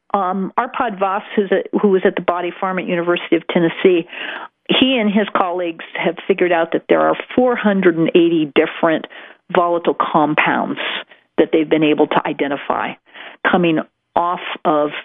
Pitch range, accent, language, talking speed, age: 175-225 Hz, American, English, 150 wpm, 50-69